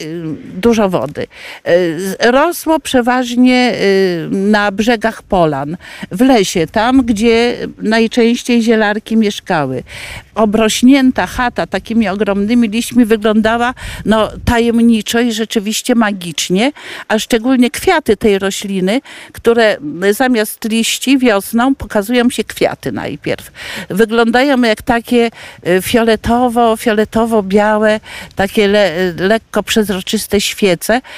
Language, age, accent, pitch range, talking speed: Polish, 50-69, native, 185-235 Hz, 90 wpm